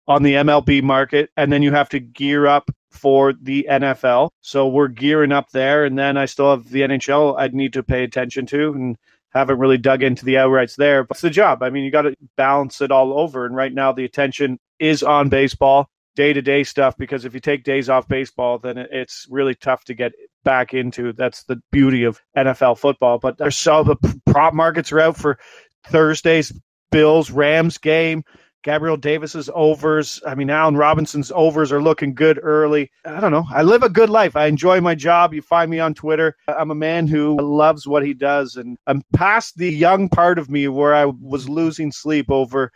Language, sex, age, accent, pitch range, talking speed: English, male, 30-49, American, 135-155 Hz, 210 wpm